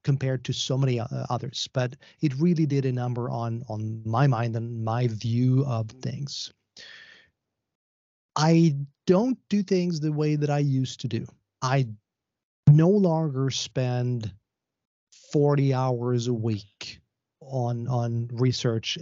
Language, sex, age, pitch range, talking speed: Czech, male, 30-49, 115-140 Hz, 135 wpm